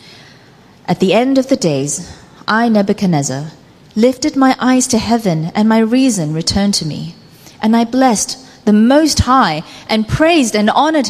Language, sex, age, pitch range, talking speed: English, female, 30-49, 170-240 Hz, 155 wpm